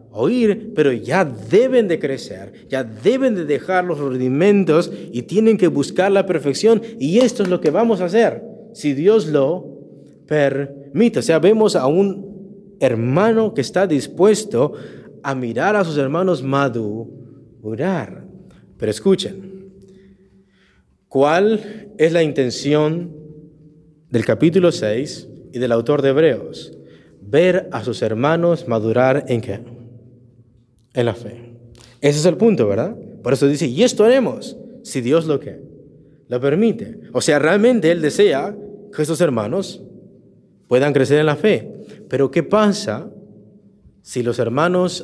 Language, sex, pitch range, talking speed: English, male, 120-190 Hz, 140 wpm